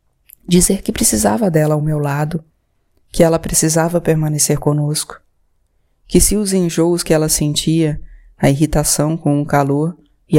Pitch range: 150-180 Hz